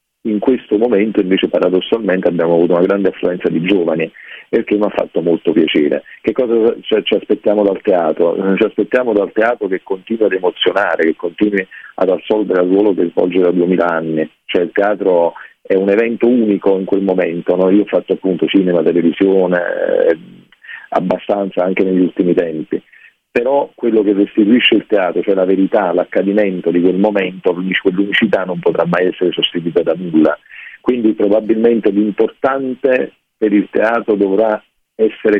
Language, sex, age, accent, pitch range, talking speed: Italian, male, 40-59, native, 90-110 Hz, 165 wpm